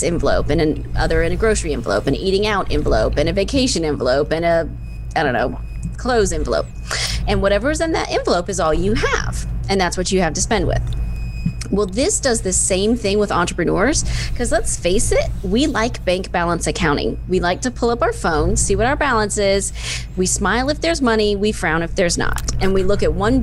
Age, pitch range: 20-39, 160-210 Hz